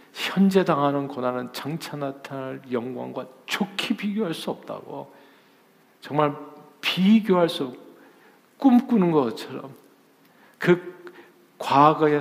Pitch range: 115-150 Hz